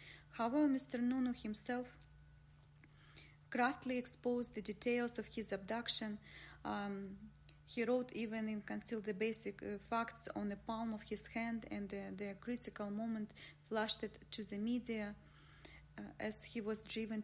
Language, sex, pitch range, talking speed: English, female, 205-230 Hz, 145 wpm